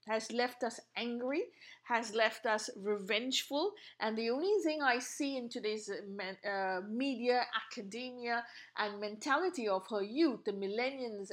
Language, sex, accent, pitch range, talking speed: English, female, Indian, 215-275 Hz, 145 wpm